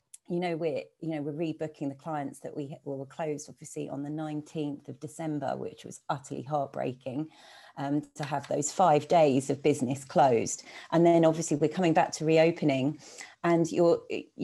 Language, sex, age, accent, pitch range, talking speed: English, female, 40-59, British, 150-190 Hz, 175 wpm